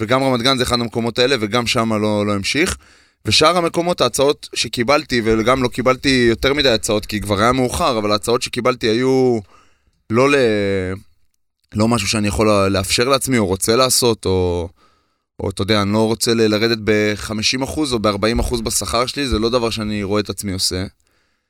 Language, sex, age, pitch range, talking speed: Hebrew, male, 20-39, 100-120 Hz, 100 wpm